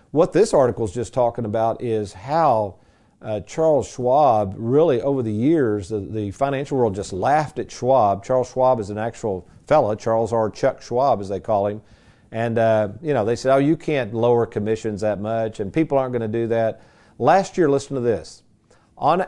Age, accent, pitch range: 50-69, American, 110-155 Hz